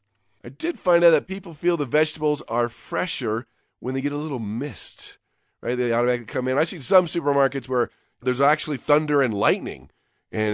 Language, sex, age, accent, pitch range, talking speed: English, male, 40-59, American, 110-155 Hz, 190 wpm